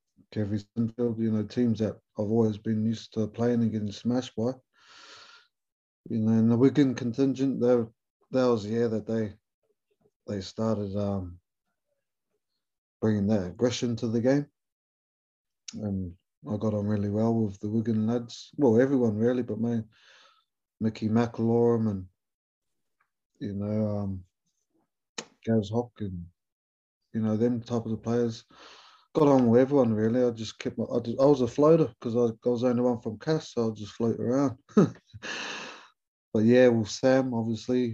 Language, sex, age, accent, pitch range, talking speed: English, male, 20-39, British, 105-120 Hz, 165 wpm